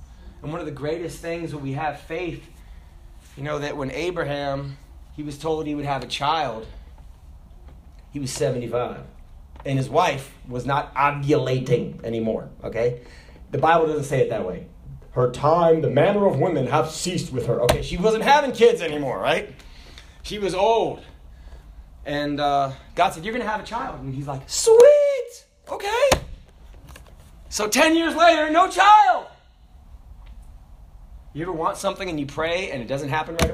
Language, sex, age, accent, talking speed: English, male, 30-49, American, 170 wpm